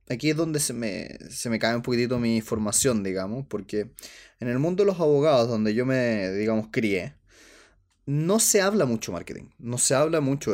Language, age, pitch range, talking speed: Spanish, 20-39, 115-160 Hz, 195 wpm